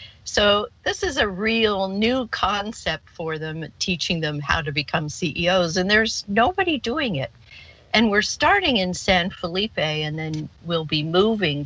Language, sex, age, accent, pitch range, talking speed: English, female, 50-69, American, 145-205 Hz, 160 wpm